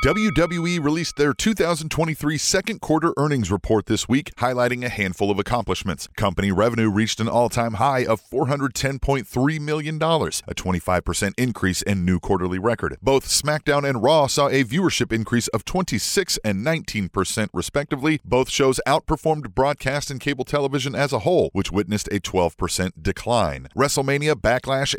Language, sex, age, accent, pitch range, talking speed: English, male, 40-59, American, 100-140 Hz, 145 wpm